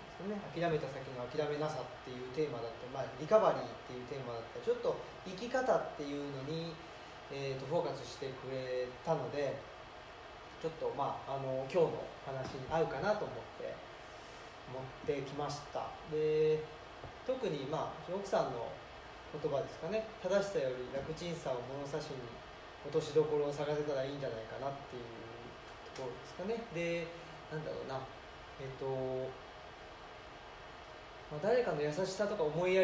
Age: 20-39